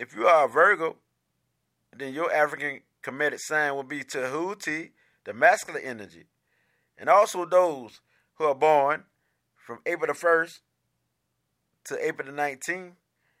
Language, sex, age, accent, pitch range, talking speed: English, male, 30-49, American, 140-170 Hz, 135 wpm